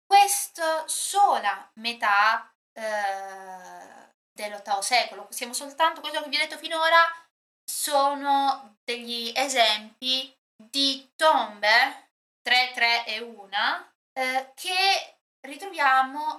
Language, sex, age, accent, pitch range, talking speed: Italian, female, 20-39, native, 215-295 Hz, 95 wpm